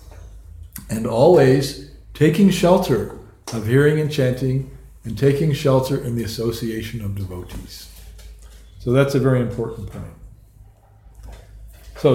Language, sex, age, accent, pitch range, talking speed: English, male, 50-69, American, 105-140 Hz, 115 wpm